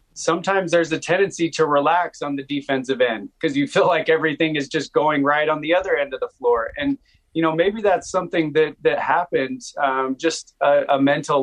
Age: 30-49